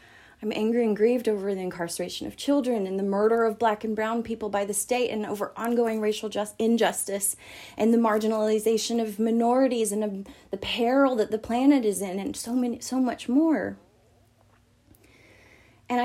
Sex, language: female, English